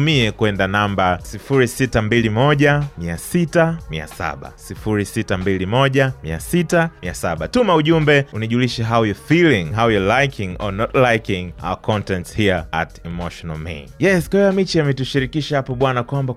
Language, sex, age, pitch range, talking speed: Swahili, male, 30-49, 90-120 Hz, 130 wpm